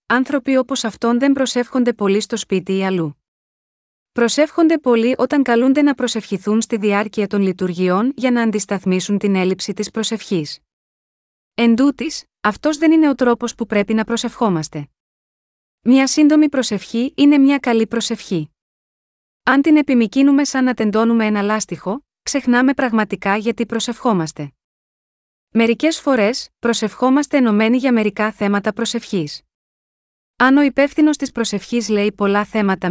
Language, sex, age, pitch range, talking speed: Greek, female, 30-49, 200-255 Hz, 135 wpm